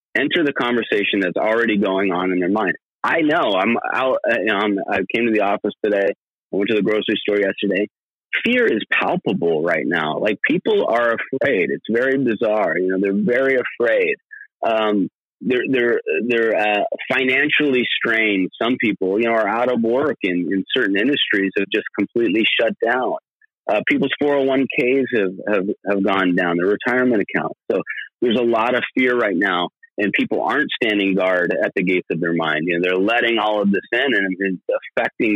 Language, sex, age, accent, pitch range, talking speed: English, male, 30-49, American, 95-120 Hz, 185 wpm